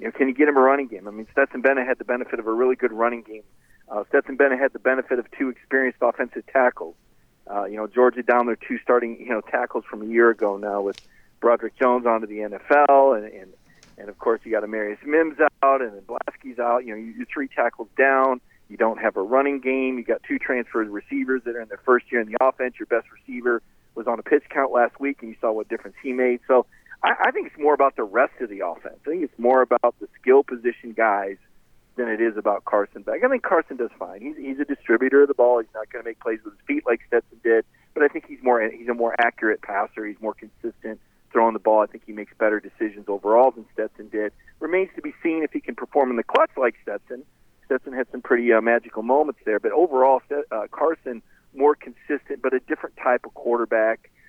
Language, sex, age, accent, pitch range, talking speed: English, male, 40-59, American, 110-135 Hz, 245 wpm